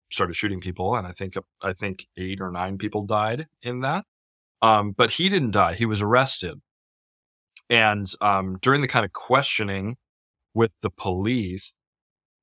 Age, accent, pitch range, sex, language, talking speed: 20-39, American, 90-105 Hz, male, English, 160 wpm